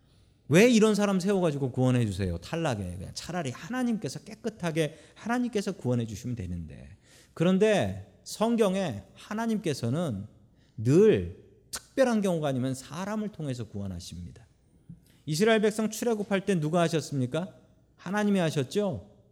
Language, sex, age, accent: Korean, male, 40-59, native